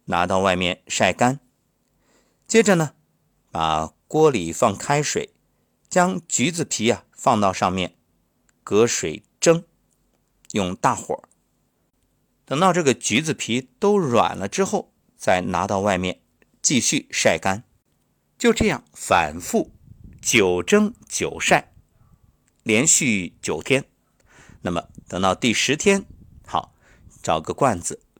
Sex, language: male, Chinese